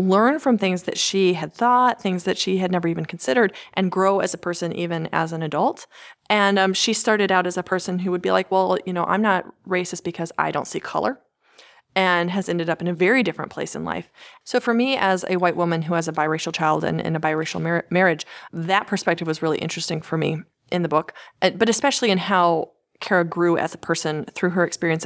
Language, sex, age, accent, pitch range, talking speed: English, female, 30-49, American, 170-200 Hz, 230 wpm